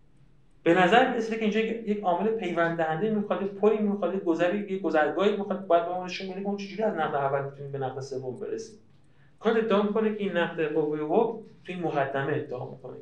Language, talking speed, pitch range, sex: Persian, 190 wpm, 140-200 Hz, male